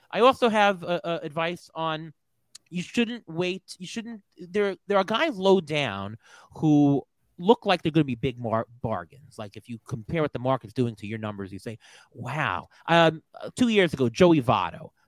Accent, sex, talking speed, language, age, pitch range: American, male, 190 wpm, English, 30-49, 125-195 Hz